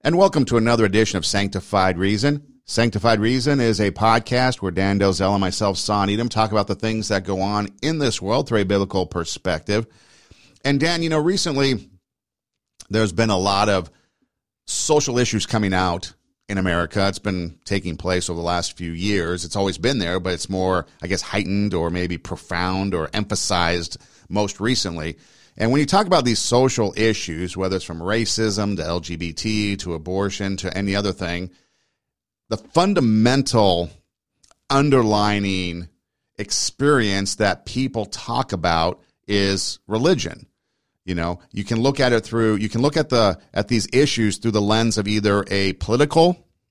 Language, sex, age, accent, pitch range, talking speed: English, male, 50-69, American, 95-115 Hz, 165 wpm